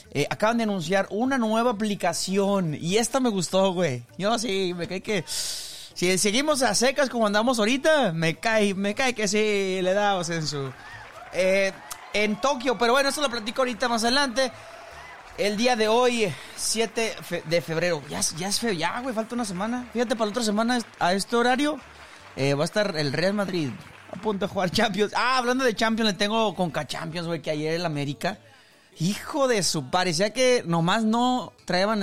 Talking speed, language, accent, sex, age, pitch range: 195 wpm, Spanish, Mexican, male, 30-49, 165-235 Hz